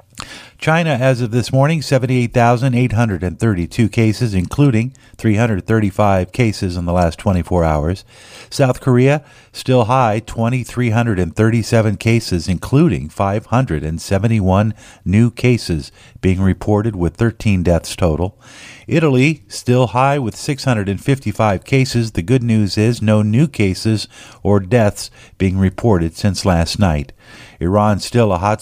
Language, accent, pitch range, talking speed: English, American, 95-115 Hz, 115 wpm